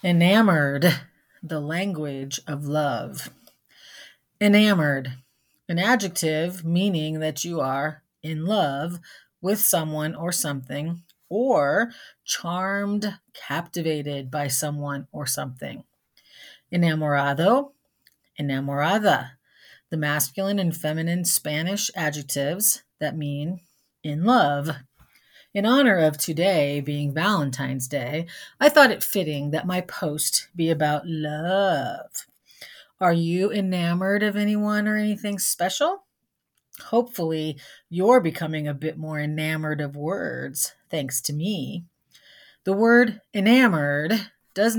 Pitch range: 150-200 Hz